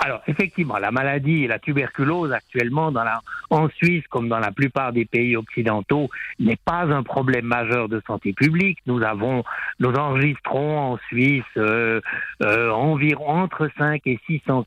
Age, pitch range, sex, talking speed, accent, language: 60-79, 120-165 Hz, male, 165 wpm, French, French